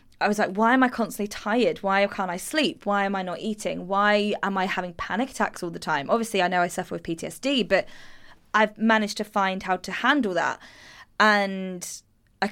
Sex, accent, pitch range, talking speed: female, British, 180-215 Hz, 210 wpm